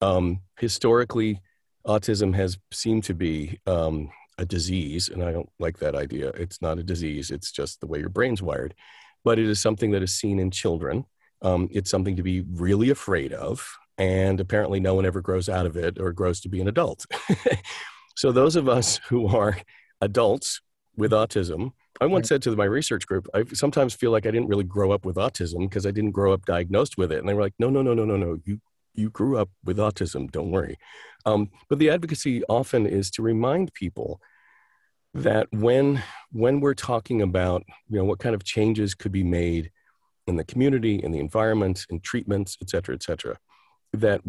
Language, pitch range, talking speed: English, 90-110 Hz, 200 wpm